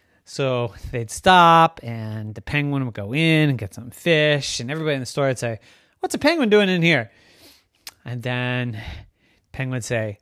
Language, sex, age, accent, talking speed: English, male, 30-49, American, 180 wpm